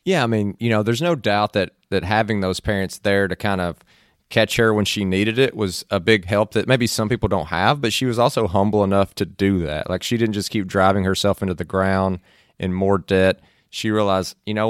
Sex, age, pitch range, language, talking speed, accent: male, 30-49, 95-110 Hz, English, 240 wpm, American